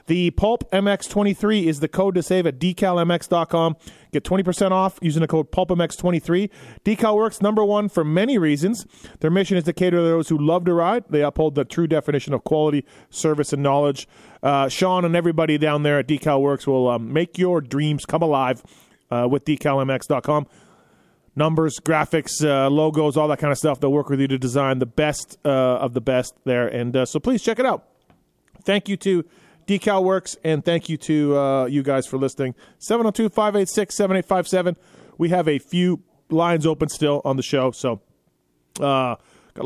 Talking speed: 180 wpm